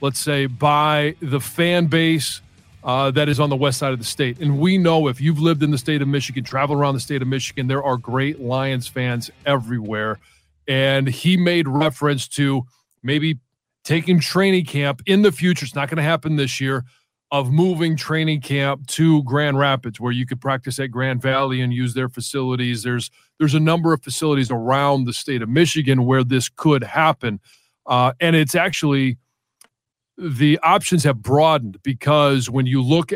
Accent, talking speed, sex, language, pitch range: American, 185 wpm, male, English, 125-150 Hz